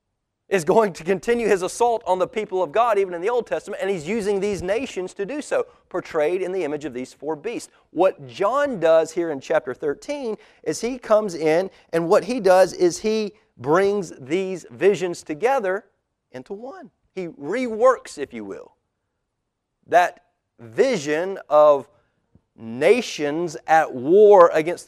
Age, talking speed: 30-49, 160 wpm